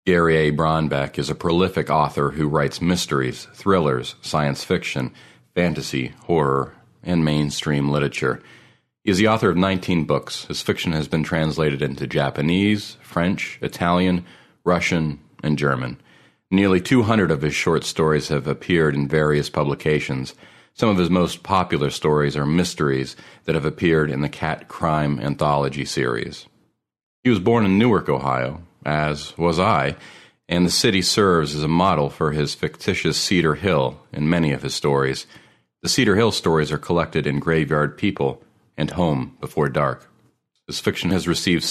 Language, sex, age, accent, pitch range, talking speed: English, male, 40-59, American, 70-85 Hz, 155 wpm